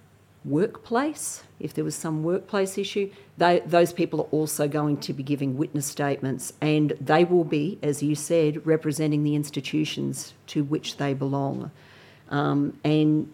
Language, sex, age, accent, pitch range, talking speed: English, female, 40-59, Australian, 145-170 Hz, 150 wpm